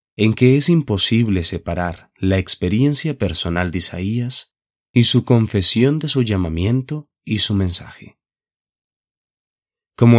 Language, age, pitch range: Spanish, 30-49, 90-120 Hz